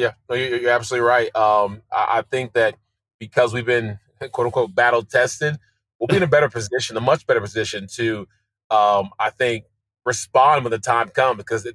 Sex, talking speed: male, 180 wpm